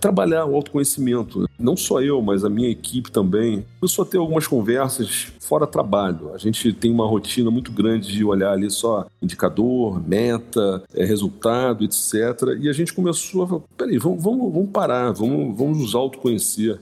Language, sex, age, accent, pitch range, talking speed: Portuguese, male, 40-59, Brazilian, 100-130 Hz, 170 wpm